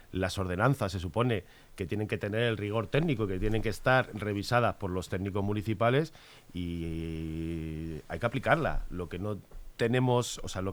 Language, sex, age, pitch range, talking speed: Spanish, male, 30-49, 100-130 Hz, 175 wpm